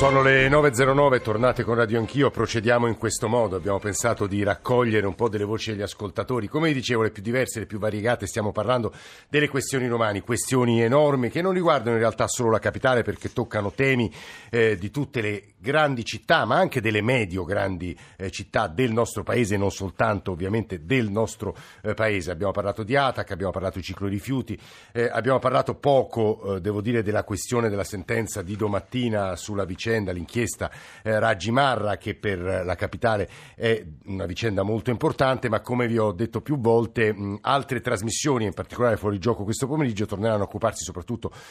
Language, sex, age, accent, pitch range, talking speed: Italian, male, 50-69, native, 100-125 Hz, 180 wpm